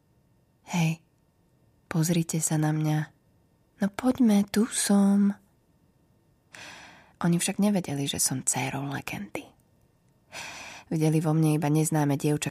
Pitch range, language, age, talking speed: 150-170 Hz, Slovak, 20-39, 105 wpm